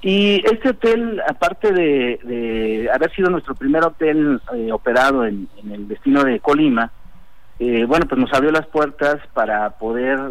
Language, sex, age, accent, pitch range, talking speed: Spanish, male, 50-69, Mexican, 115-155 Hz, 165 wpm